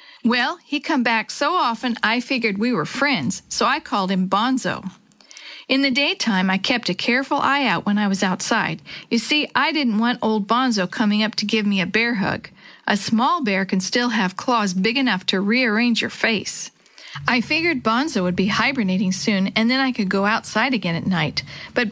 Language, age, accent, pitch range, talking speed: English, 50-69, American, 195-255 Hz, 205 wpm